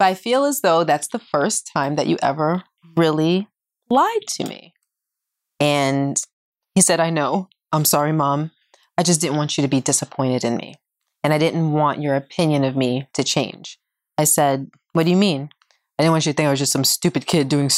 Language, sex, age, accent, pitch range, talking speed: English, female, 20-39, American, 135-180 Hz, 215 wpm